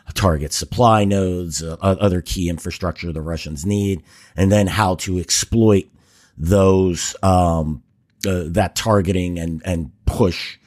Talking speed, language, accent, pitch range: 130 wpm, English, American, 85-105 Hz